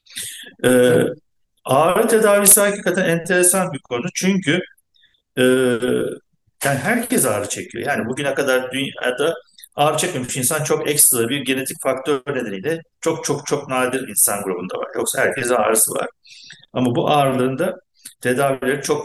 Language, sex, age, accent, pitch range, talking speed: Turkish, male, 60-79, native, 125-180 Hz, 130 wpm